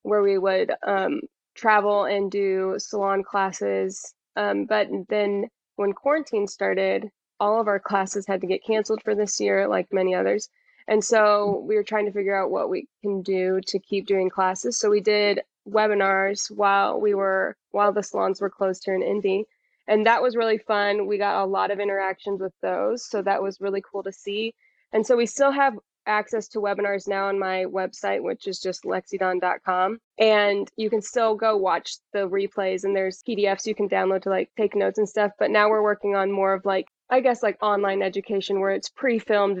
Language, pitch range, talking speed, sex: English, 190-215 Hz, 195 wpm, female